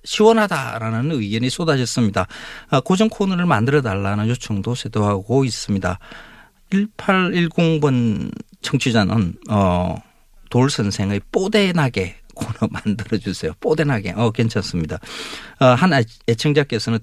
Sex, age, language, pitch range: male, 40-59, Korean, 95-130 Hz